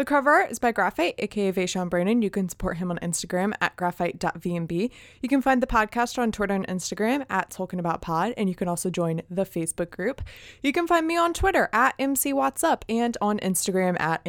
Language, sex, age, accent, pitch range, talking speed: English, female, 20-39, American, 180-250 Hz, 200 wpm